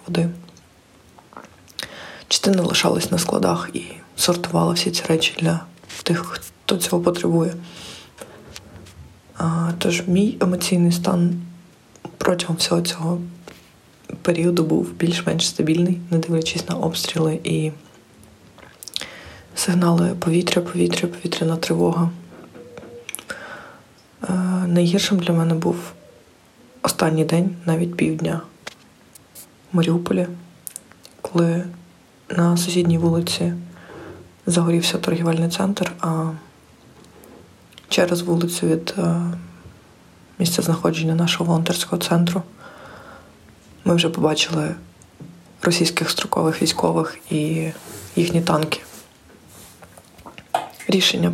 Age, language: 20-39, Ukrainian